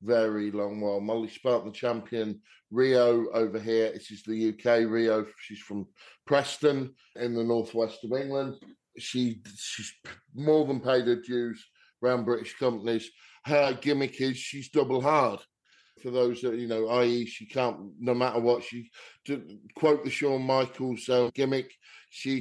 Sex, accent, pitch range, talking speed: male, British, 115-135 Hz, 160 wpm